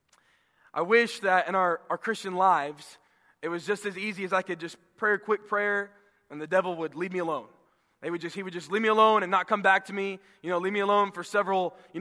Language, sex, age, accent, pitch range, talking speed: English, male, 20-39, American, 190-230 Hz, 255 wpm